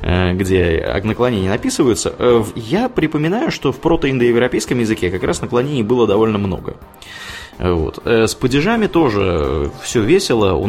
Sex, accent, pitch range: male, native, 90-125 Hz